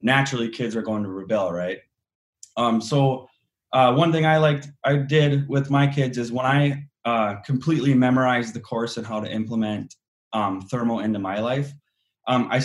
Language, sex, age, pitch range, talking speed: English, male, 20-39, 105-125 Hz, 180 wpm